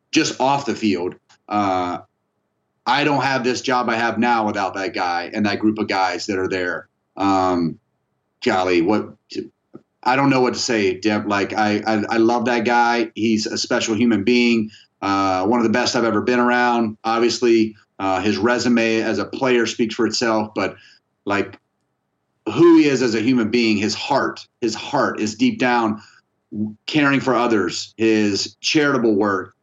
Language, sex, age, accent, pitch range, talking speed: English, male, 30-49, American, 110-125 Hz, 175 wpm